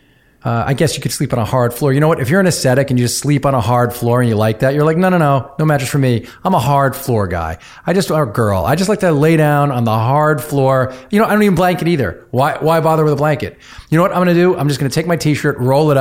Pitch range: 110-150 Hz